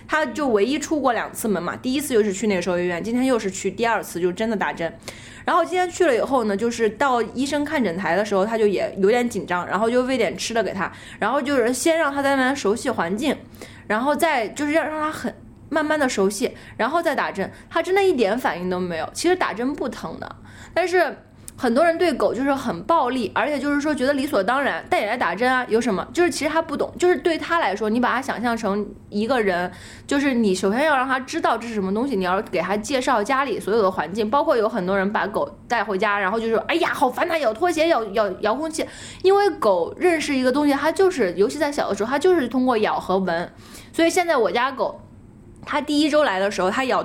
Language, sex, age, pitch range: Chinese, female, 20-39, 205-305 Hz